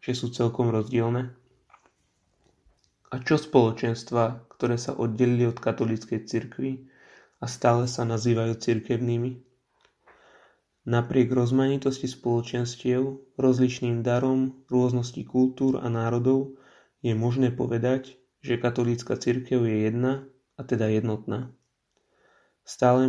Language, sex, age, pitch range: Slovak, male, 30-49, 120-130 Hz